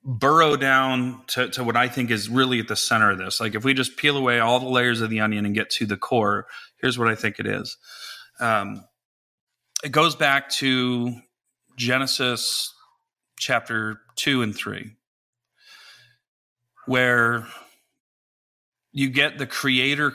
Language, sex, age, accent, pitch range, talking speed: English, male, 30-49, American, 115-130 Hz, 155 wpm